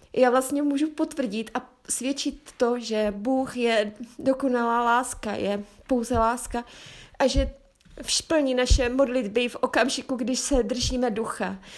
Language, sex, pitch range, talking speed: Czech, female, 240-270 Hz, 135 wpm